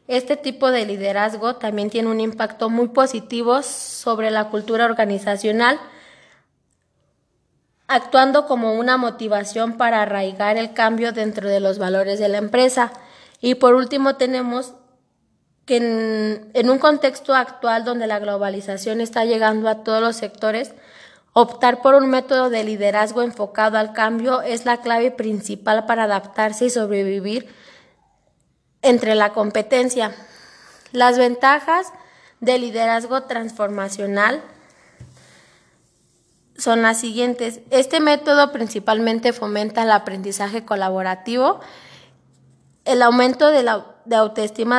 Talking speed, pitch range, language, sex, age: 120 wpm, 215-250 Hz, Spanish, female, 20-39